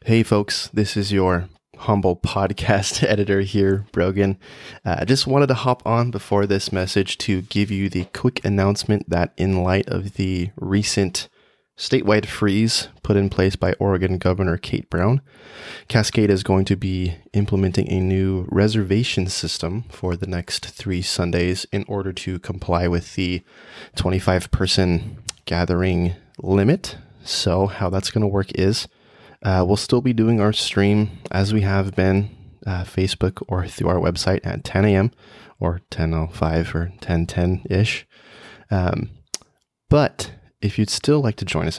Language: English